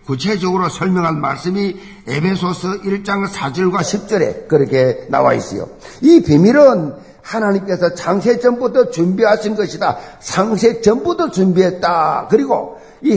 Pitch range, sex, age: 180-250 Hz, male, 50-69